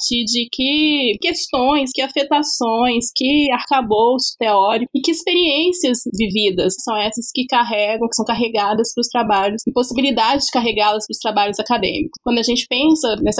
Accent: Brazilian